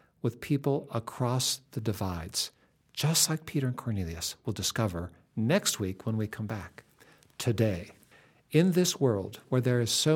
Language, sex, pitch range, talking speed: English, male, 110-150 Hz, 155 wpm